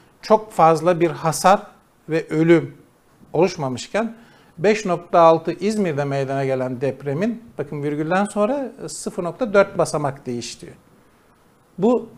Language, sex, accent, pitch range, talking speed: Turkish, male, native, 150-175 Hz, 95 wpm